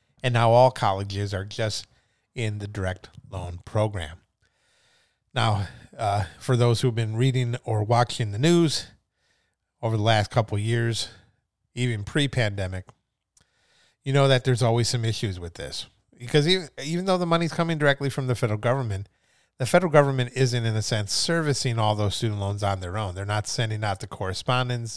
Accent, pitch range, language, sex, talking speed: American, 105-130 Hz, English, male, 175 wpm